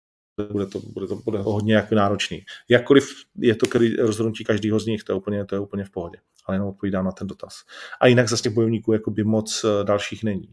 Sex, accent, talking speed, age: male, native, 230 wpm, 40-59